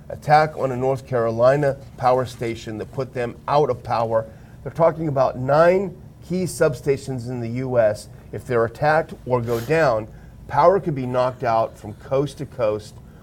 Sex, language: male, English